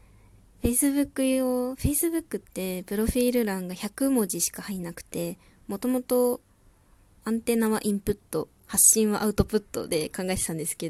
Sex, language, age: female, Japanese, 20-39